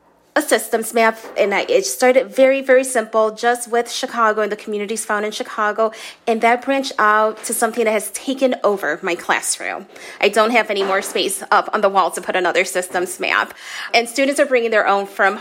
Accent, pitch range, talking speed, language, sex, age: American, 200-250 Hz, 205 wpm, English, female, 20-39